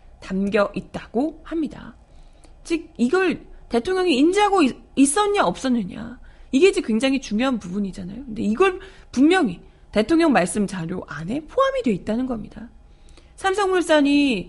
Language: Korean